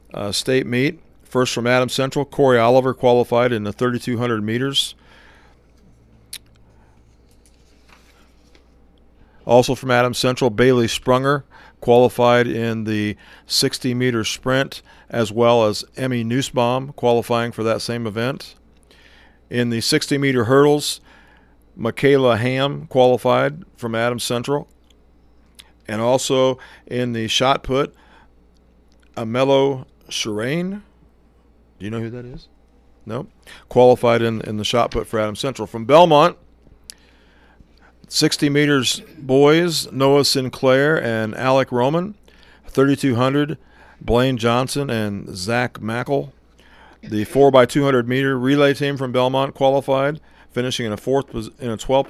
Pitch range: 105-135 Hz